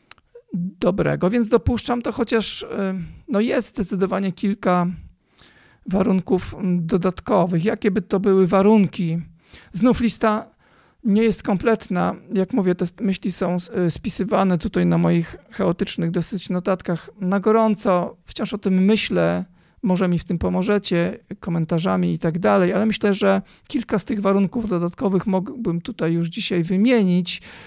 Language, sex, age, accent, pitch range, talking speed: Polish, male, 40-59, native, 170-210 Hz, 130 wpm